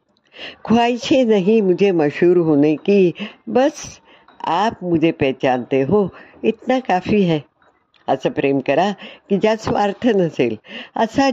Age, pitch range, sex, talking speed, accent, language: 60-79, 150-210 Hz, female, 120 wpm, native, Hindi